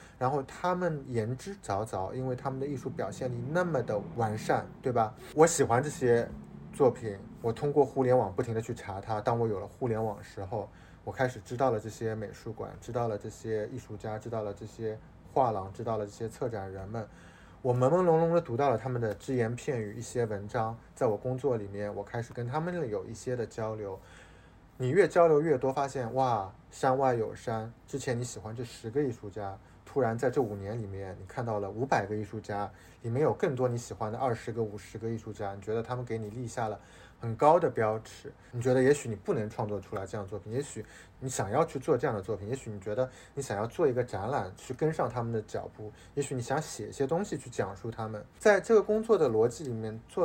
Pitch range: 105-130 Hz